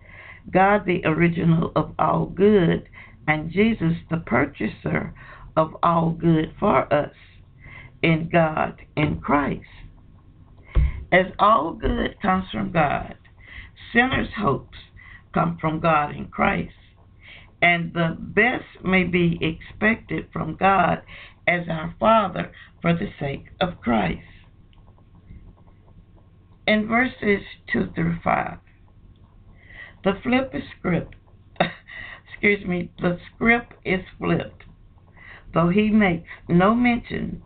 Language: English